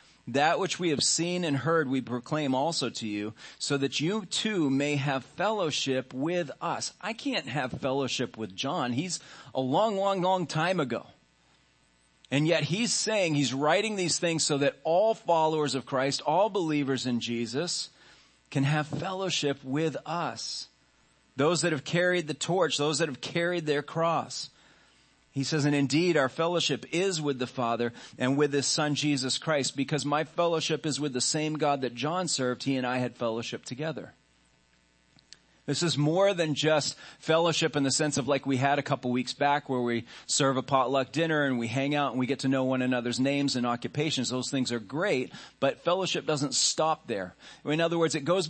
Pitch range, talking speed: 120-155 Hz, 190 wpm